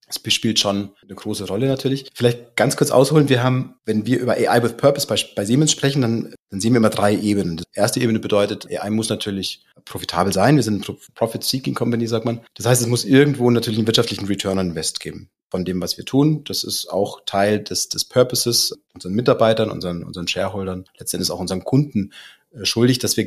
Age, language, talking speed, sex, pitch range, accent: 30-49, German, 215 wpm, male, 100-120 Hz, German